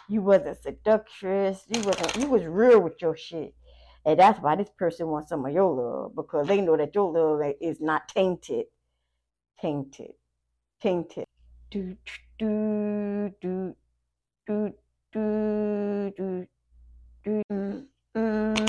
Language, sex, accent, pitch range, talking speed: English, female, American, 150-190 Hz, 120 wpm